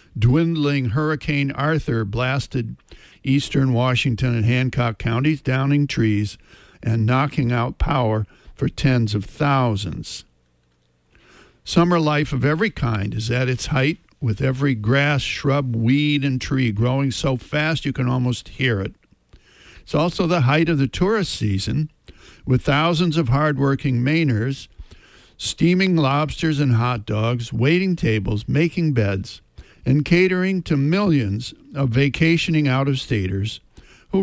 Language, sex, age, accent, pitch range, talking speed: English, male, 60-79, American, 115-150 Hz, 130 wpm